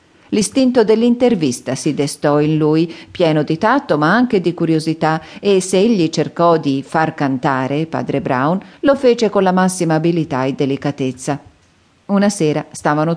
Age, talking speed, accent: 40-59, 150 wpm, native